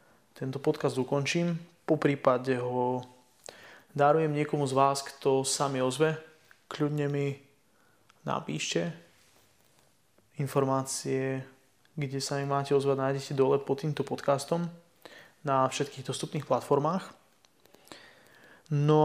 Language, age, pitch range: Slovak, 20-39, 135-150 Hz